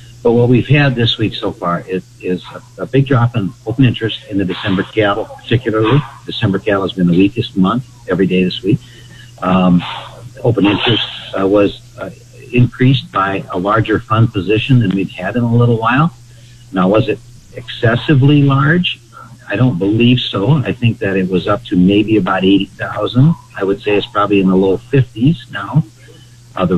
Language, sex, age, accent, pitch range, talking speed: English, male, 50-69, American, 100-125 Hz, 180 wpm